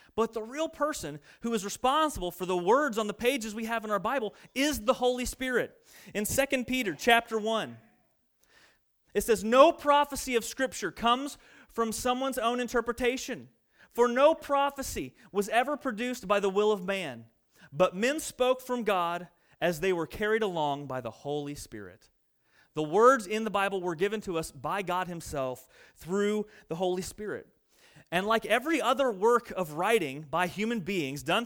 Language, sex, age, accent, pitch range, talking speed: English, male, 30-49, American, 195-250 Hz, 170 wpm